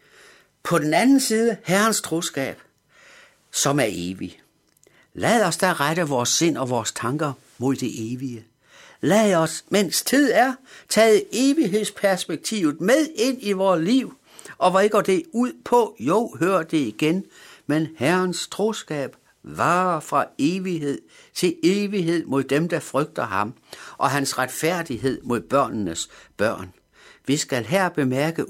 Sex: male